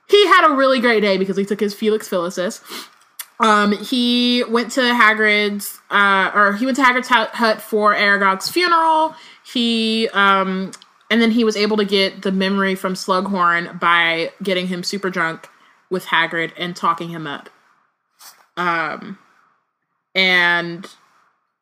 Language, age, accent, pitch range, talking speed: English, 20-39, American, 180-230 Hz, 145 wpm